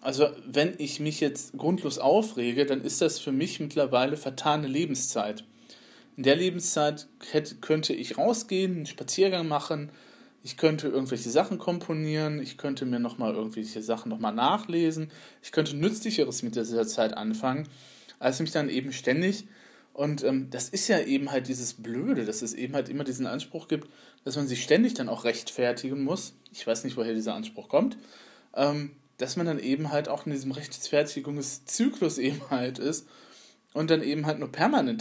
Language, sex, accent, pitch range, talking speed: German, male, German, 130-180 Hz, 175 wpm